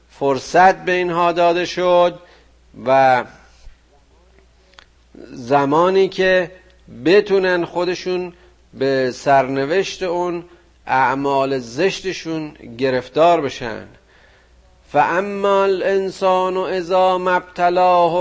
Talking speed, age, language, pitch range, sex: 80 wpm, 50-69, Persian, 140-180 Hz, male